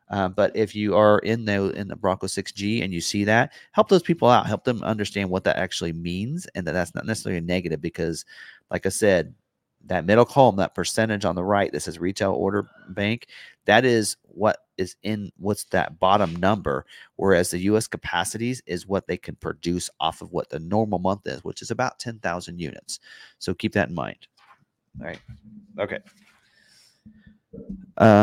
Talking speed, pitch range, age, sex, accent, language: 190 wpm, 90-120 Hz, 30-49, male, American, English